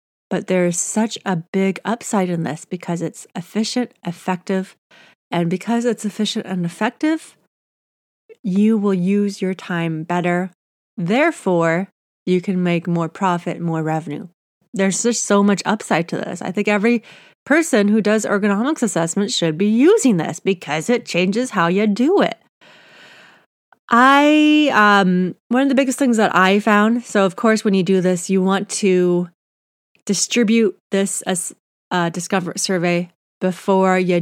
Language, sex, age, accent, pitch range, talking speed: English, female, 30-49, American, 175-215 Hz, 155 wpm